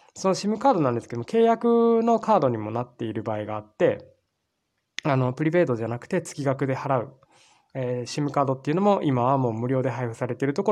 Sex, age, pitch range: male, 20-39, 120-165 Hz